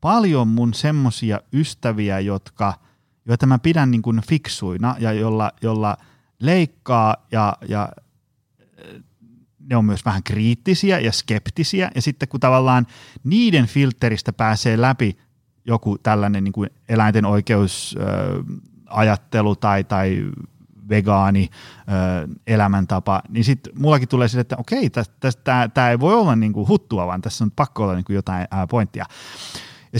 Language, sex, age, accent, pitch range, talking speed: Finnish, male, 30-49, native, 110-140 Hz, 135 wpm